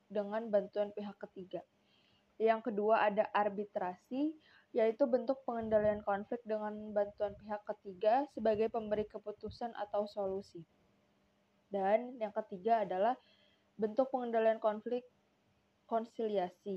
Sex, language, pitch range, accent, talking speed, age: female, Indonesian, 200-225 Hz, native, 105 wpm, 20-39